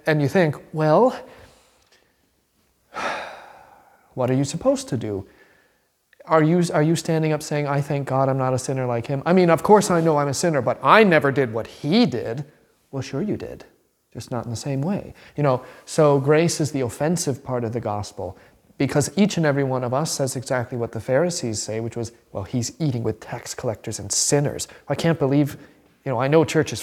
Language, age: English, 30-49